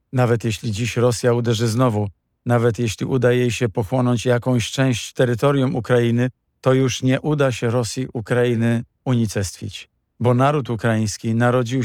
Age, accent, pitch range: 50-69, native, 115-130 Hz